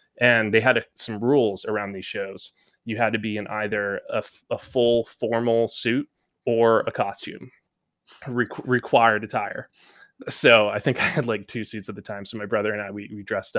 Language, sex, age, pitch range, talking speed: English, male, 20-39, 105-120 Hz, 205 wpm